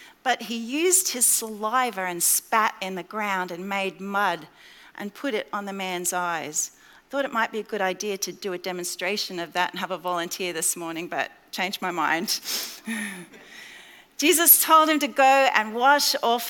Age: 40-59